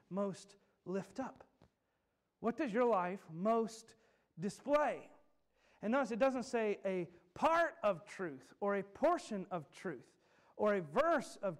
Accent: American